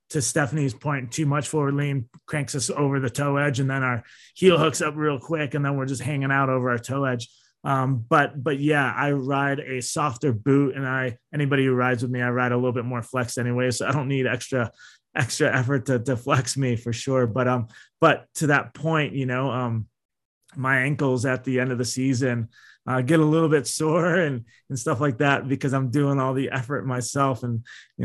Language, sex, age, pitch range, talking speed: English, male, 20-39, 120-140 Hz, 225 wpm